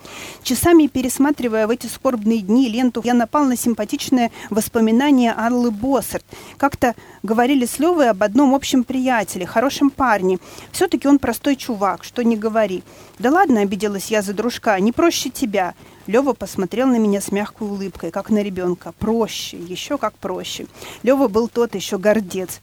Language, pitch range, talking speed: Russian, 210-265 Hz, 160 wpm